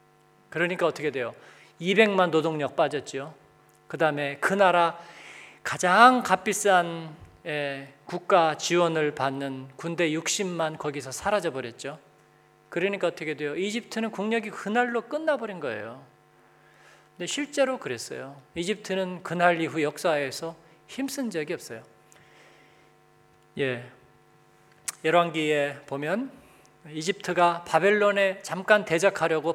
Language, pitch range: Korean, 150-195 Hz